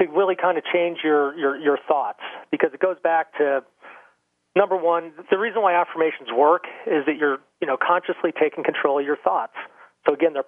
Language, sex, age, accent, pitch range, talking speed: English, male, 40-59, American, 135-175 Hz, 200 wpm